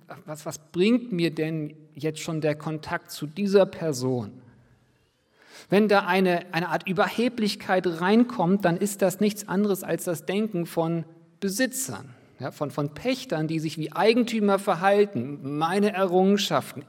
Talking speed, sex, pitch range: 140 wpm, male, 150-195 Hz